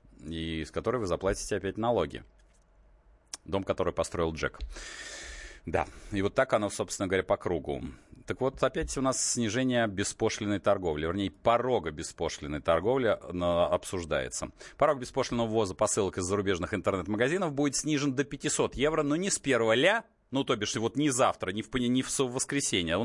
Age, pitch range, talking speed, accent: 30-49, 110-145 Hz, 165 wpm, native